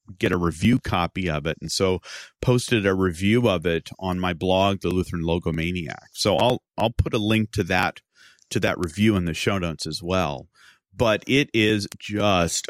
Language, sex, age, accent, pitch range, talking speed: English, male, 40-59, American, 90-120 Hz, 190 wpm